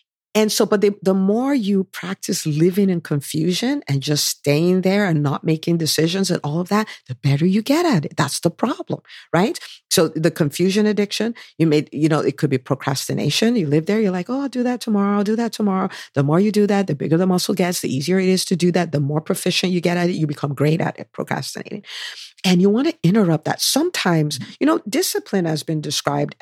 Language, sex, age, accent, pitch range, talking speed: English, female, 50-69, American, 155-210 Hz, 230 wpm